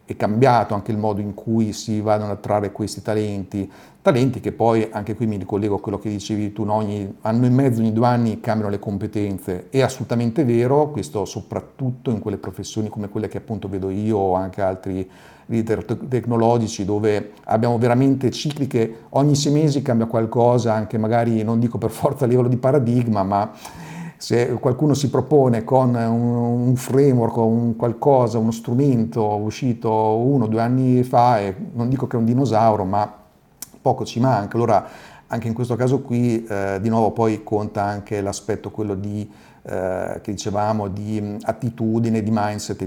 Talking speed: 175 wpm